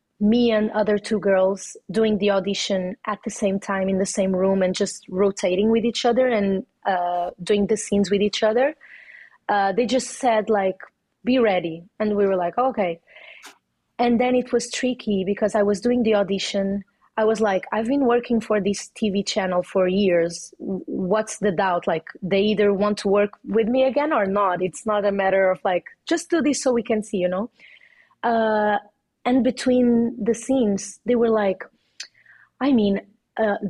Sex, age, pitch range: female, 30-49, 190-225 Hz